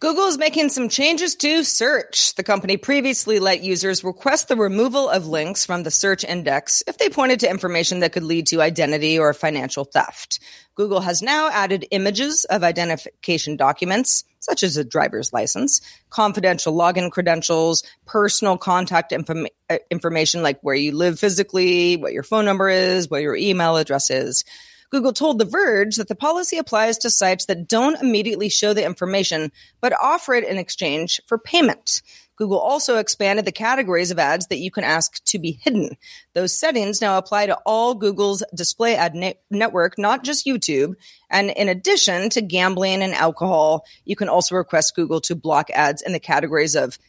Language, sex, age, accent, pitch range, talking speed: English, female, 40-59, American, 170-230 Hz, 175 wpm